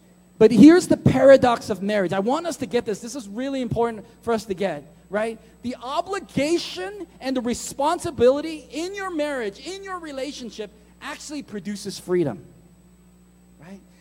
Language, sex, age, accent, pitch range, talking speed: English, male, 30-49, American, 185-275 Hz, 155 wpm